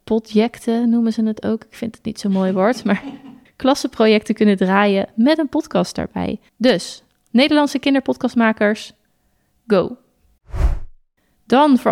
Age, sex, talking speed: 30-49, female, 130 wpm